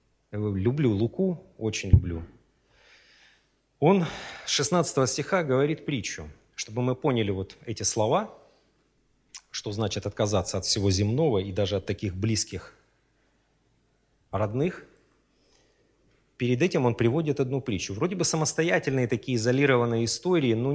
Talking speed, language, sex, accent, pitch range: 115 wpm, Russian, male, native, 110-165 Hz